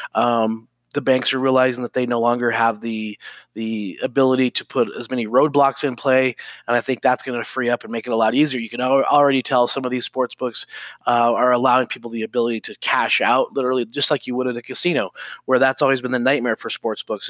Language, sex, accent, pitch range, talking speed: English, male, American, 120-135 Hz, 240 wpm